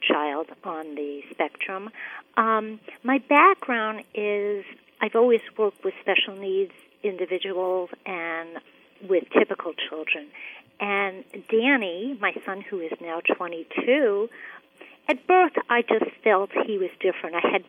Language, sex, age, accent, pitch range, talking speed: English, female, 50-69, American, 180-275 Hz, 125 wpm